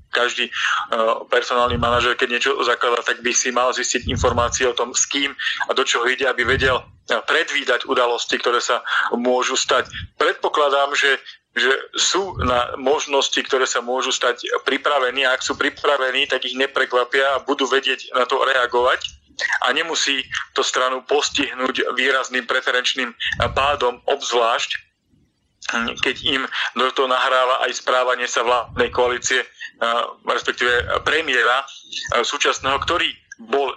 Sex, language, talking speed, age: male, Slovak, 135 wpm, 40-59